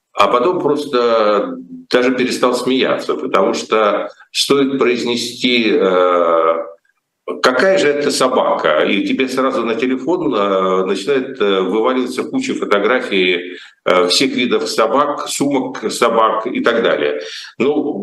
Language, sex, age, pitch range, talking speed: Russian, male, 50-69, 105-175 Hz, 105 wpm